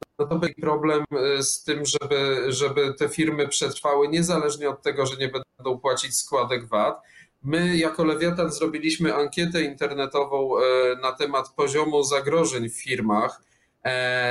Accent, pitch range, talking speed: native, 135-160 Hz, 135 wpm